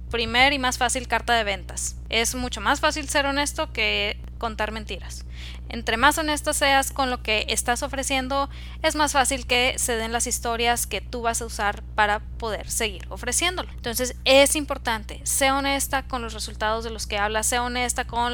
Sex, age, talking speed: female, 10-29, 185 wpm